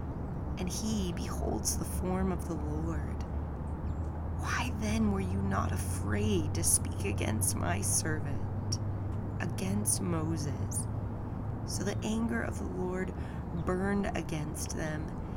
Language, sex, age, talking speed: English, female, 30-49, 115 wpm